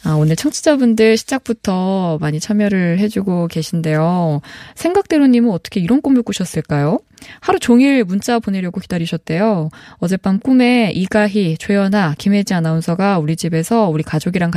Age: 20-39